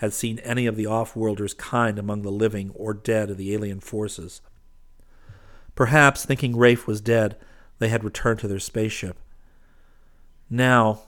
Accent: American